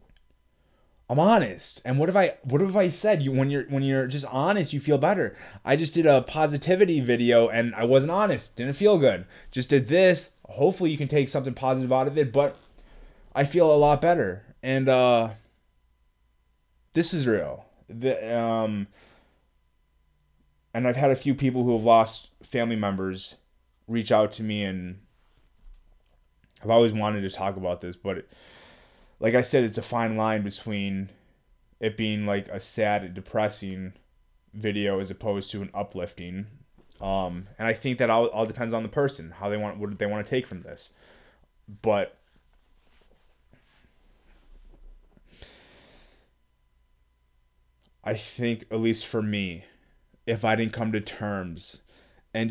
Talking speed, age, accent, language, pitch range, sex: 160 wpm, 20-39, American, English, 90-130 Hz, male